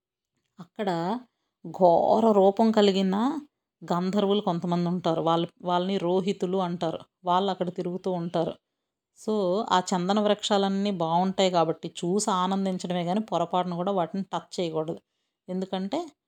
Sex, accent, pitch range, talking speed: female, native, 180-205 Hz, 110 wpm